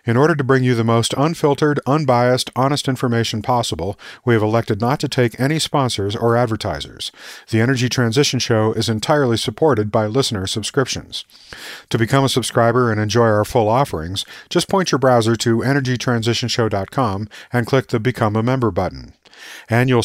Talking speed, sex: 165 wpm, male